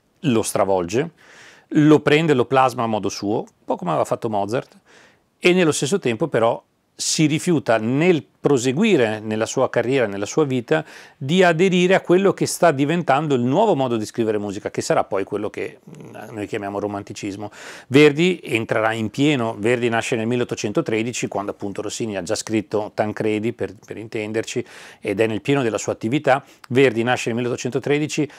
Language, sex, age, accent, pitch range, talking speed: Italian, male, 40-59, native, 110-150 Hz, 170 wpm